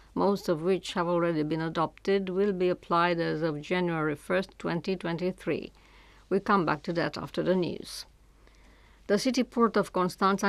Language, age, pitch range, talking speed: English, 60-79, 170-195 Hz, 160 wpm